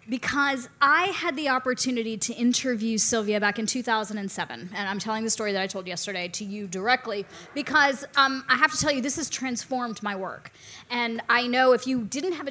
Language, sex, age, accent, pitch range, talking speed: English, female, 20-39, American, 210-255 Hz, 200 wpm